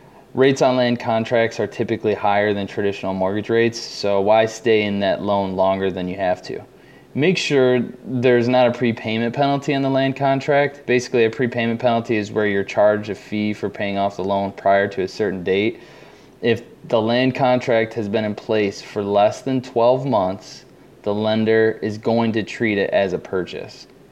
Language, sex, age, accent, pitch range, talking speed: English, male, 20-39, American, 100-120 Hz, 190 wpm